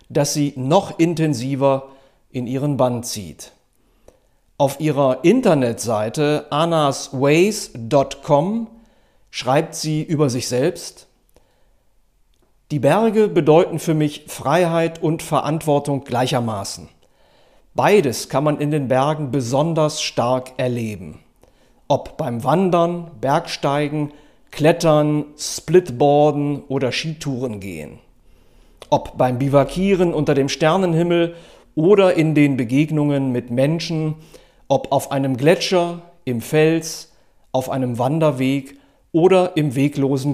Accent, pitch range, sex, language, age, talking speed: German, 130-165 Hz, male, German, 50-69, 100 wpm